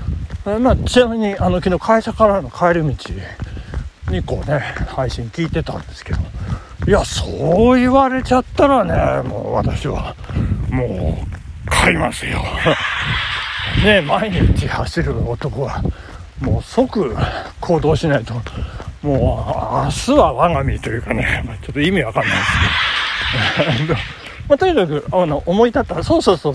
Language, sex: Japanese, male